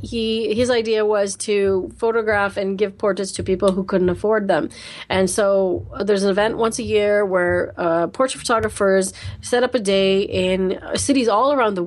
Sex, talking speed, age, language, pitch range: female, 185 wpm, 30-49, English, 190-225 Hz